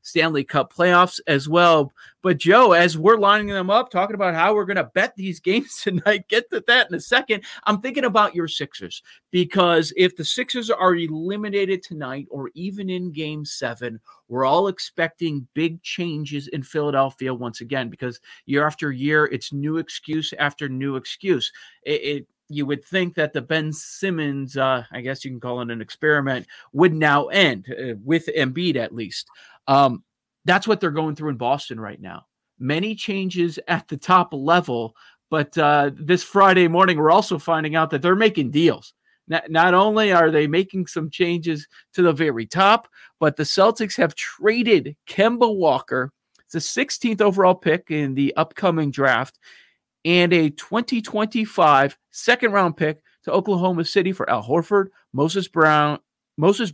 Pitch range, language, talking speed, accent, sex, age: 145-190 Hz, English, 170 wpm, American, male, 40-59